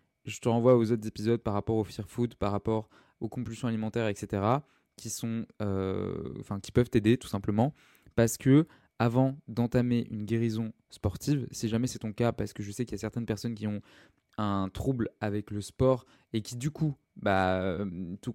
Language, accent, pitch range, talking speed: French, French, 105-125 Hz, 195 wpm